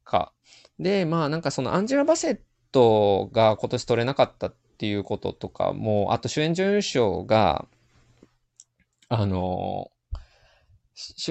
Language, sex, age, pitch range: Japanese, male, 20-39, 110-160 Hz